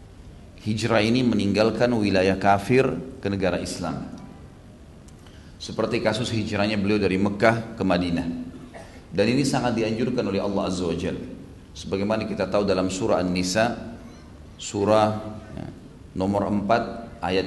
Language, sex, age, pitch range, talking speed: Indonesian, male, 40-59, 95-110 Hz, 110 wpm